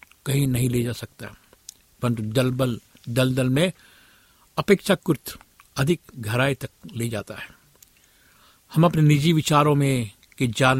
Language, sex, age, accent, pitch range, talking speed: Hindi, male, 60-79, native, 115-150 Hz, 120 wpm